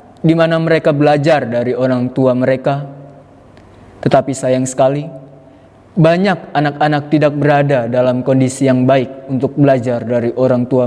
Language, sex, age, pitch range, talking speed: Indonesian, male, 20-39, 125-150 Hz, 125 wpm